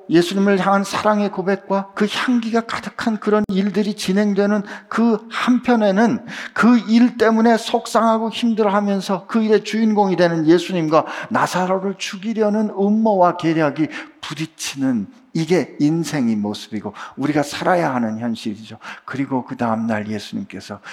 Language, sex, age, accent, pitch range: Korean, male, 50-69, native, 195-260 Hz